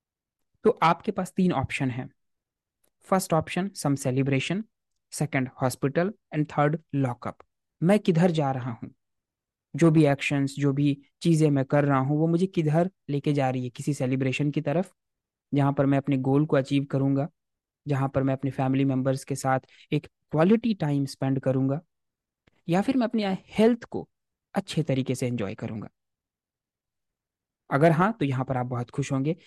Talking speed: 165 wpm